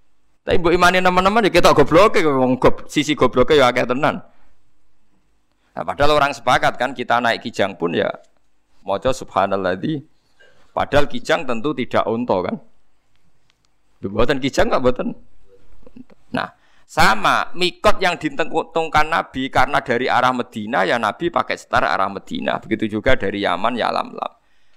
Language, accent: Indonesian, native